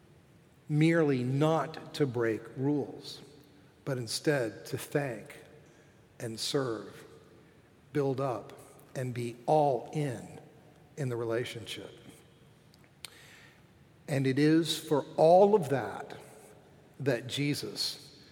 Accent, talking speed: American, 95 wpm